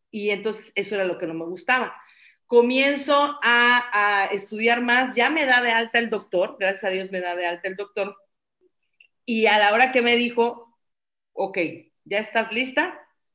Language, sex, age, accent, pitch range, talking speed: Spanish, female, 40-59, Mexican, 185-235 Hz, 185 wpm